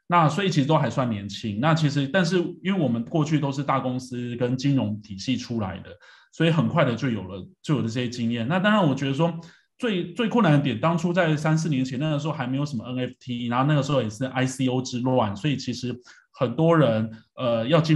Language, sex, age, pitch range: Chinese, male, 20-39, 115-150 Hz